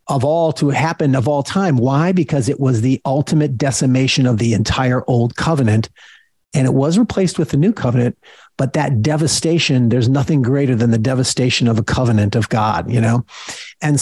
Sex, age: male, 40-59